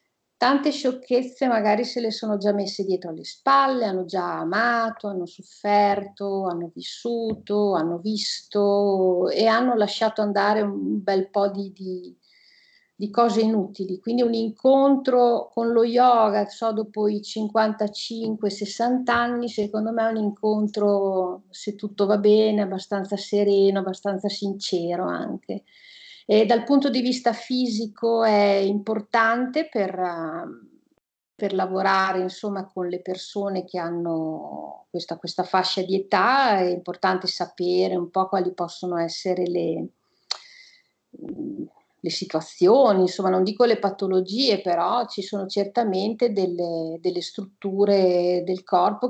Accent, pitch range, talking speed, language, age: native, 185-230 Hz, 125 wpm, Italian, 50-69